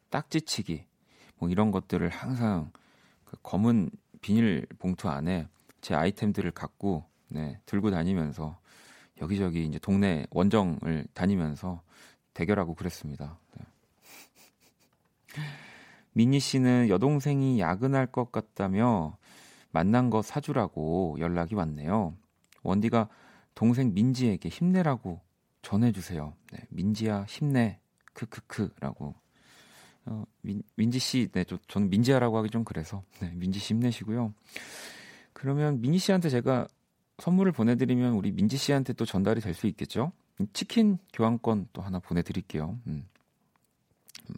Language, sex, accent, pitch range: Korean, male, native, 90-125 Hz